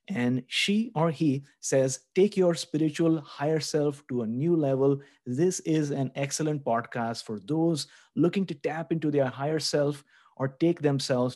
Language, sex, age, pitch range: English, male, 30-49, 120-155 Hz